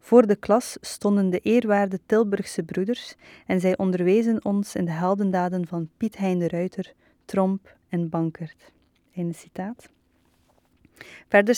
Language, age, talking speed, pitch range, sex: Dutch, 20-39, 140 wpm, 180-215 Hz, female